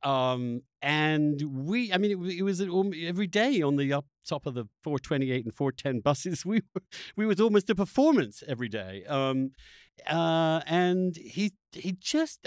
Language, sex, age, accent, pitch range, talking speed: English, male, 50-69, British, 115-175 Hz, 170 wpm